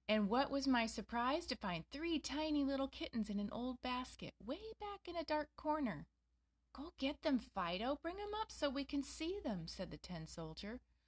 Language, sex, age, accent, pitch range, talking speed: English, female, 30-49, American, 160-235 Hz, 200 wpm